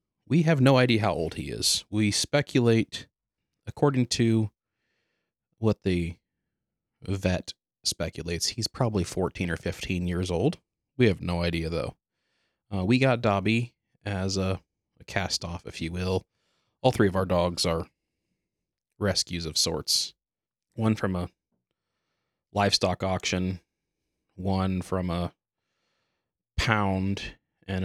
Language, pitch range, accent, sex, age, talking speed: English, 90-110 Hz, American, male, 30-49, 125 wpm